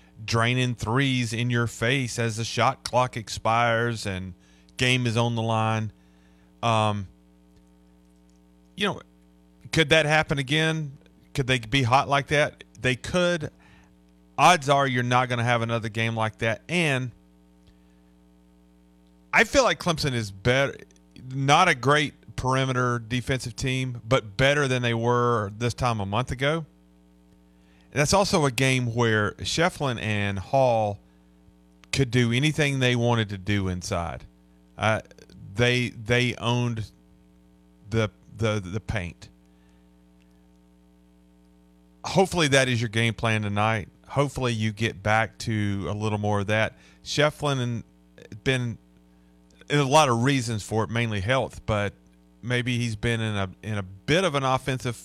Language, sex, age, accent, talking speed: English, male, 30-49, American, 140 wpm